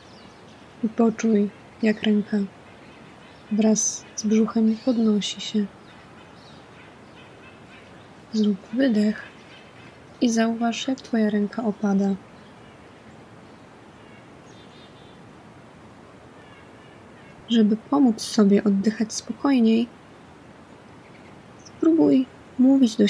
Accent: native